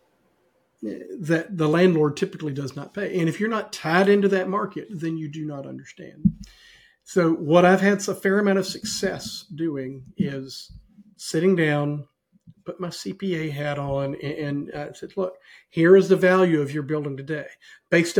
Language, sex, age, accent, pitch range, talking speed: English, male, 50-69, American, 150-190 Hz, 170 wpm